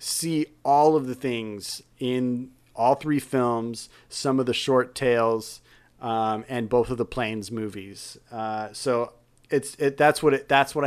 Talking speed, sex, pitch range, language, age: 165 wpm, male, 115-140 Hz, English, 30-49